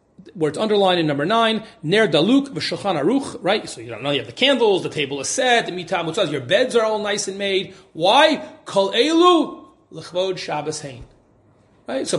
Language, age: English, 30-49